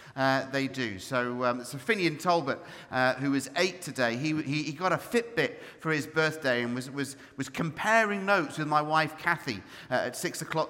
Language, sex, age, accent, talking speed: English, male, 40-59, British, 195 wpm